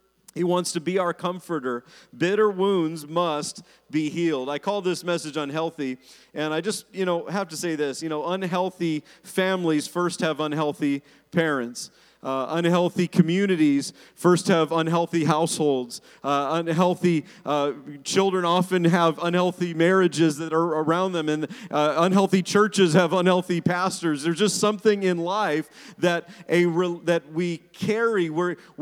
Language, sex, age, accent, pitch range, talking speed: English, male, 40-59, American, 155-185 Hz, 145 wpm